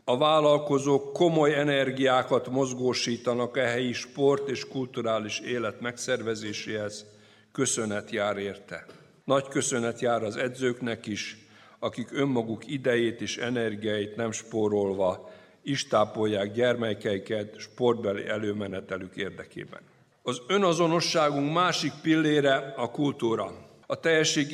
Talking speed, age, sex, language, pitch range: 100 wpm, 60-79, male, Hungarian, 115-140 Hz